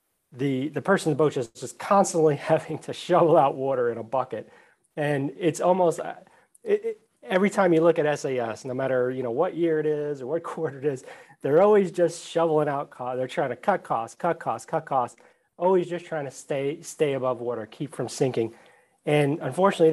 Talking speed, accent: 205 wpm, American